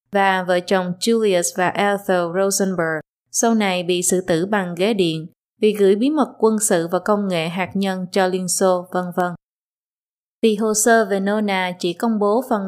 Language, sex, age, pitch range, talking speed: Vietnamese, female, 20-39, 185-225 Hz, 190 wpm